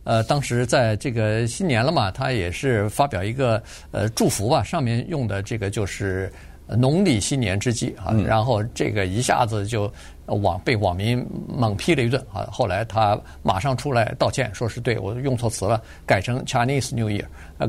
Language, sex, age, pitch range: Chinese, male, 50-69, 110-145 Hz